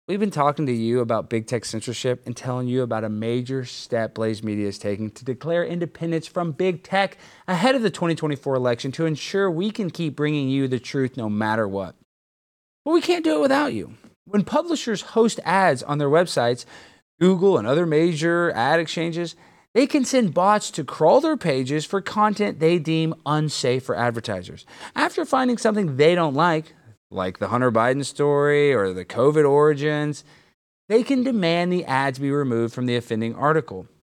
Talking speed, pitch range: 180 wpm, 125-195 Hz